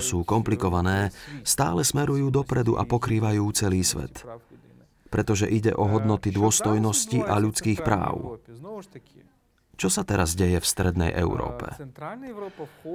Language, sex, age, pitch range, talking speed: Slovak, male, 30-49, 100-130 Hz, 110 wpm